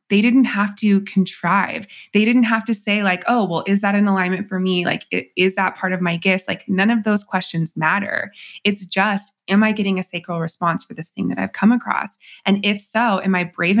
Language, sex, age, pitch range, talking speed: English, female, 20-39, 185-225 Hz, 230 wpm